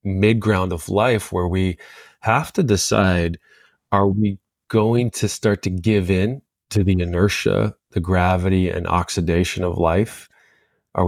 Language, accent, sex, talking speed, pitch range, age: English, American, male, 145 wpm, 90-105 Hz, 20-39